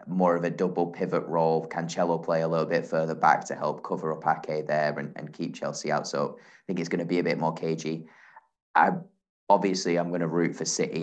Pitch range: 80-90 Hz